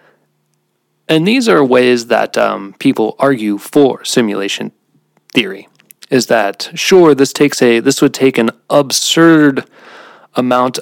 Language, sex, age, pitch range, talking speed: English, male, 30-49, 110-145 Hz, 130 wpm